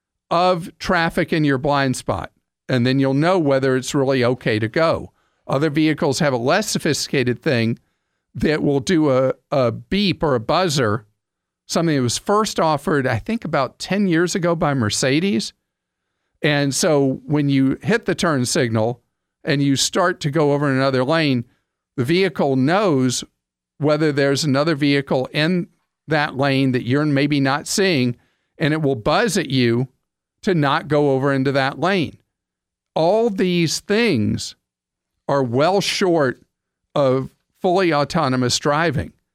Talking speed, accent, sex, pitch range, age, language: 150 wpm, American, male, 130-170 Hz, 50-69, English